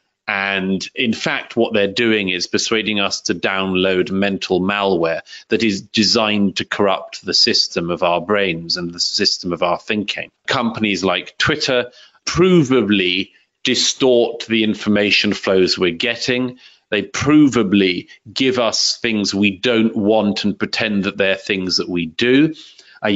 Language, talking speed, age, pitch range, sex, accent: English, 145 wpm, 40-59, 100-130 Hz, male, British